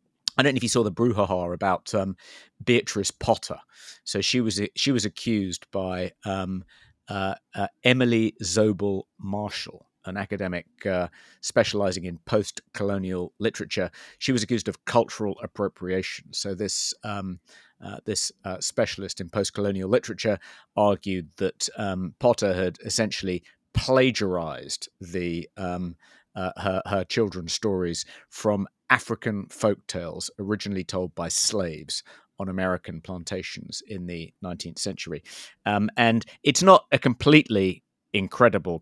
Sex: male